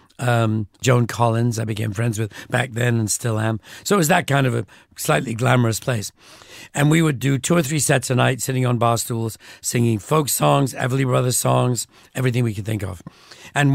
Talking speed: 210 wpm